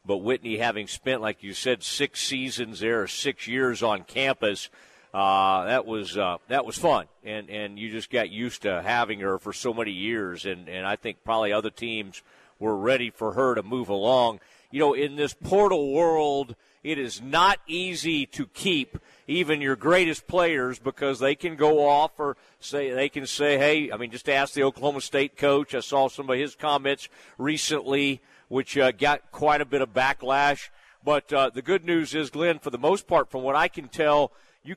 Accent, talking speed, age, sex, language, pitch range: American, 200 wpm, 40-59, male, English, 130-160 Hz